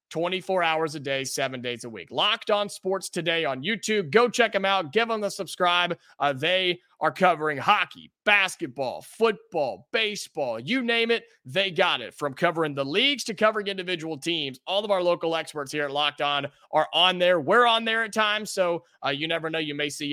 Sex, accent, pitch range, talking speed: male, American, 150-210 Hz, 205 wpm